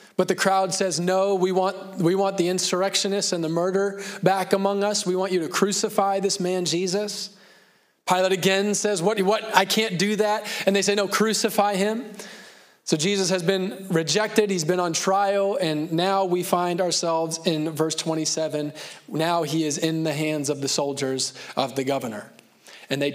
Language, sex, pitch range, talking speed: English, male, 155-195 Hz, 180 wpm